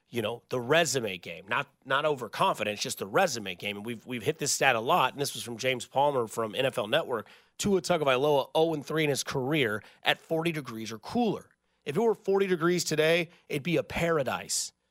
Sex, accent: male, American